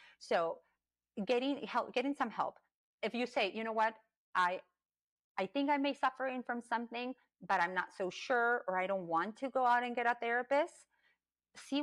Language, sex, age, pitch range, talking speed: English, female, 30-49, 190-245 Hz, 190 wpm